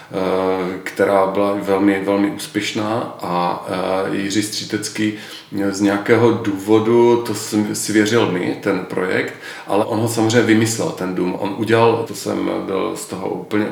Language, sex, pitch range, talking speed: Czech, male, 100-115 Hz, 140 wpm